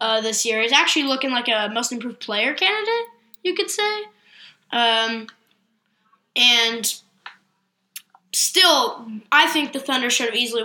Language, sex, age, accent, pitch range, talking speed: English, female, 10-29, American, 225-280 Hz, 140 wpm